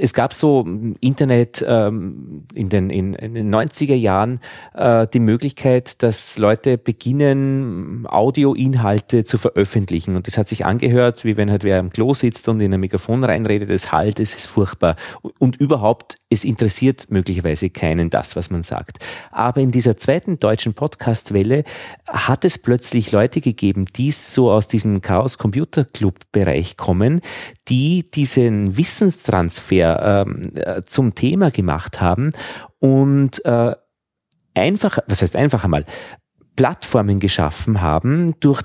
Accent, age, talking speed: Austrian, 30-49, 140 wpm